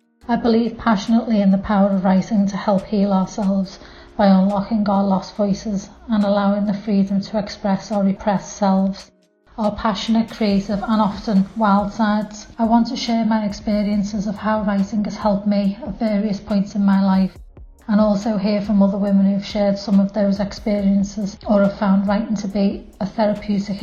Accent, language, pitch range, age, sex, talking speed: British, English, 195-215 Hz, 30-49, female, 180 wpm